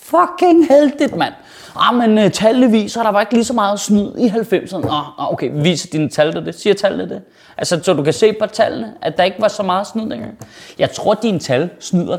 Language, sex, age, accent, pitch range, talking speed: Danish, male, 30-49, native, 150-225 Hz, 225 wpm